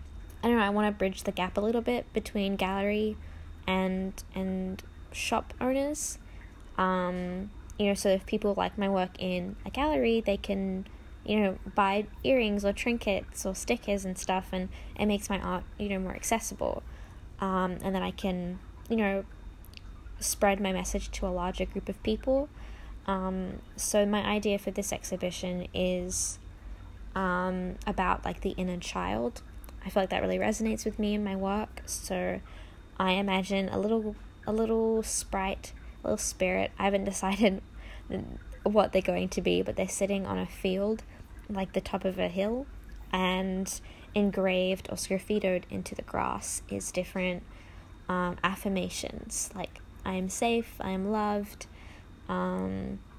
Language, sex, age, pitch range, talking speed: English, female, 10-29, 120-200 Hz, 160 wpm